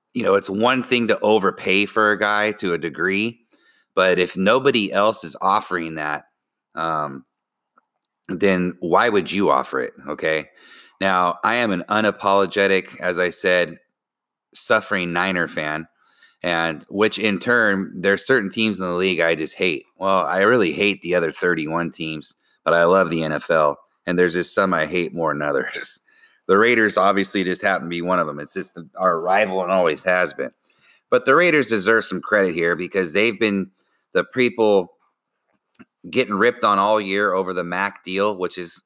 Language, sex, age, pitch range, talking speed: English, male, 30-49, 90-105 Hz, 180 wpm